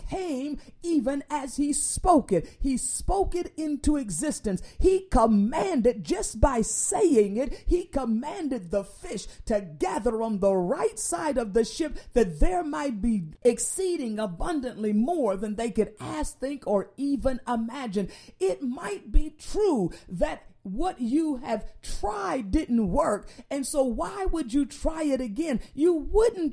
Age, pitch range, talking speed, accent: 50-69, 215-310 Hz, 150 wpm, American